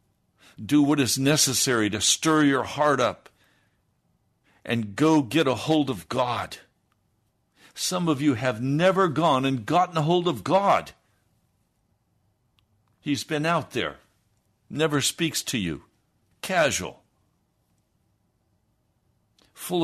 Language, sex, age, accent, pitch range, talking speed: English, male, 60-79, American, 100-140 Hz, 115 wpm